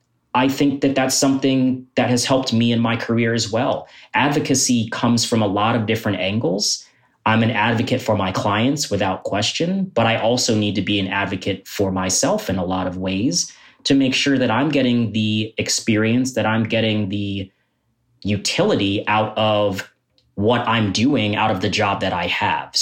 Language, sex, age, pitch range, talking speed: English, male, 30-49, 100-125 Hz, 185 wpm